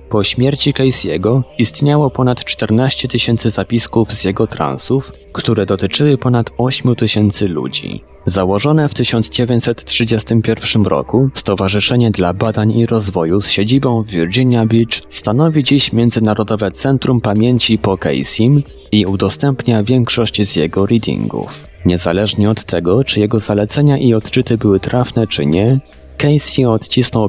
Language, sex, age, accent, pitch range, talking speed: Polish, male, 20-39, native, 100-125 Hz, 130 wpm